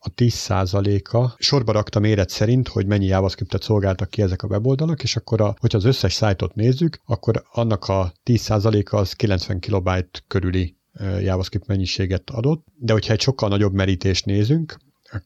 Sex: male